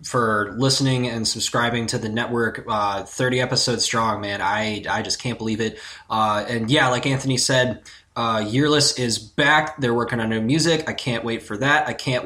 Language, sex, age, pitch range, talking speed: English, male, 20-39, 110-130 Hz, 195 wpm